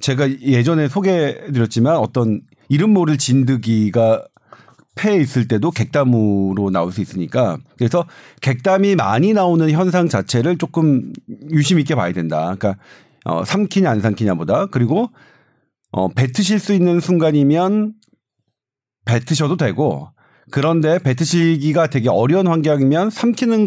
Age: 40-59